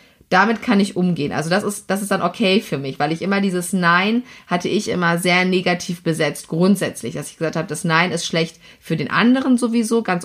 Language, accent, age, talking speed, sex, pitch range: German, German, 30-49, 220 wpm, female, 175-225 Hz